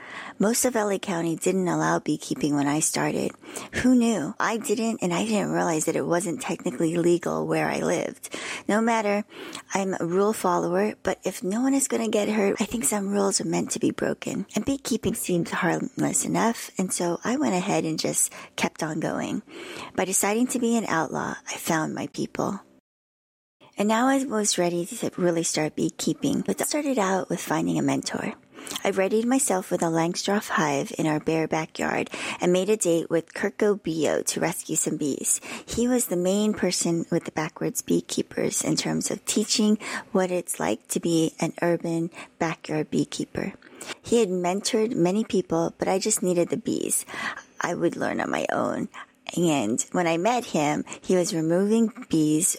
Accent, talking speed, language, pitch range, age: American, 185 wpm, English, 165-220 Hz, 40-59